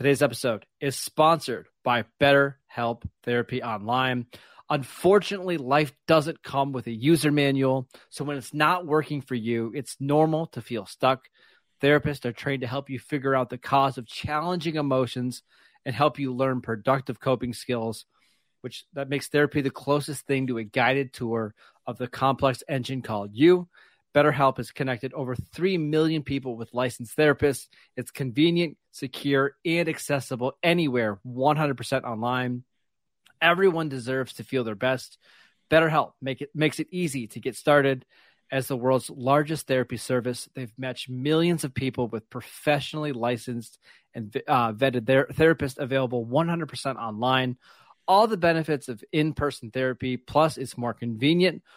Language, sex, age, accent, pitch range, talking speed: English, male, 30-49, American, 125-150 Hz, 150 wpm